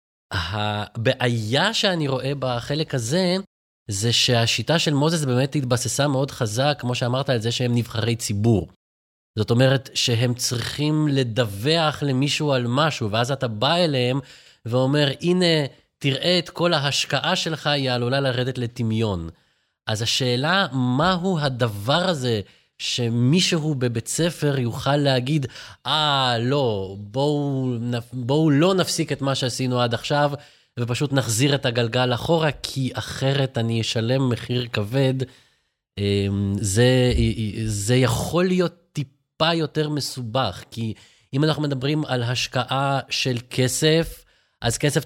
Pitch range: 115-145 Hz